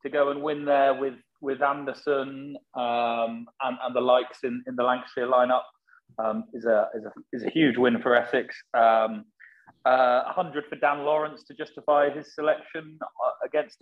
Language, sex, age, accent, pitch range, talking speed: English, male, 30-49, British, 120-155 Hz, 180 wpm